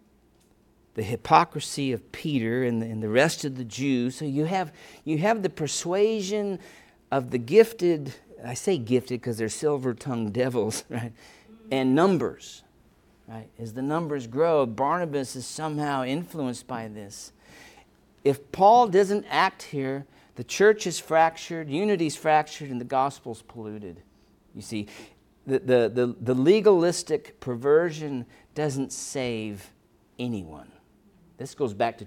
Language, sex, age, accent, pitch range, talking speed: English, male, 50-69, American, 115-155 Hz, 135 wpm